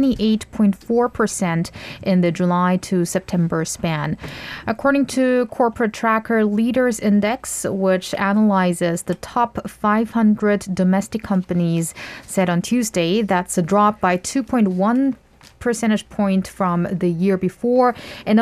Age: 20-39